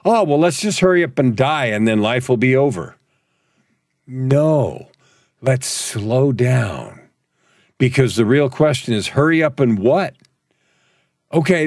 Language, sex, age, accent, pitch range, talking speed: English, male, 50-69, American, 110-150 Hz, 145 wpm